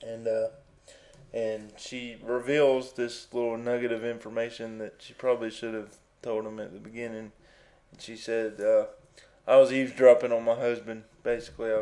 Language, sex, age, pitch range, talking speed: English, male, 20-39, 110-130 Hz, 160 wpm